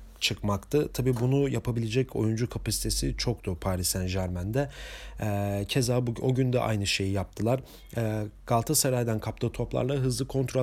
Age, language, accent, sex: 40-59, German, Turkish, male